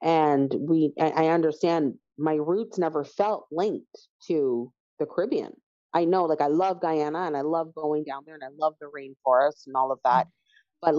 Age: 30-49